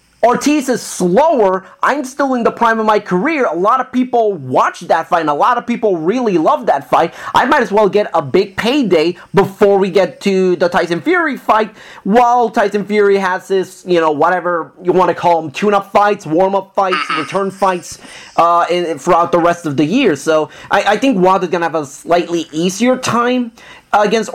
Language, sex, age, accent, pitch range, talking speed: English, male, 30-49, American, 175-230 Hz, 205 wpm